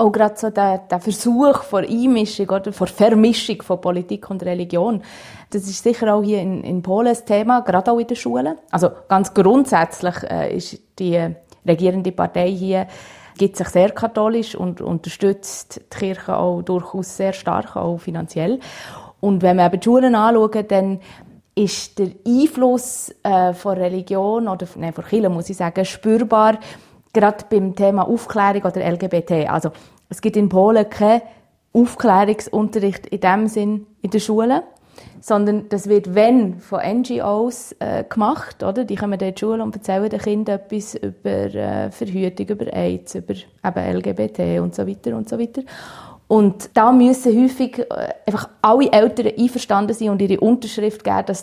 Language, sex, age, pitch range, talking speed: German, female, 30-49, 180-220 Hz, 160 wpm